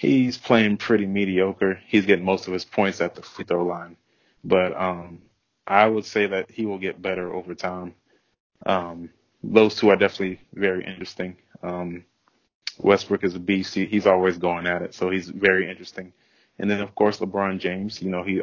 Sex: male